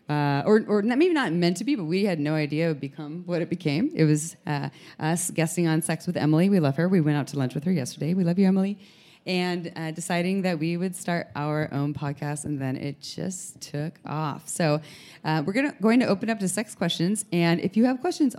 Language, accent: English, American